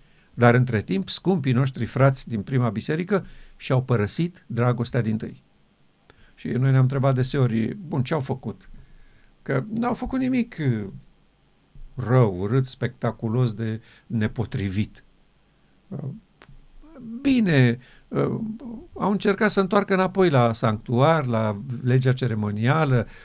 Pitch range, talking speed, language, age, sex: 115-155 Hz, 110 wpm, Romanian, 50-69, male